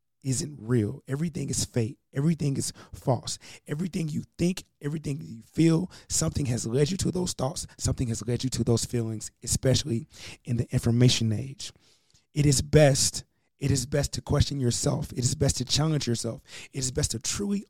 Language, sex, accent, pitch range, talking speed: English, male, American, 120-150 Hz, 180 wpm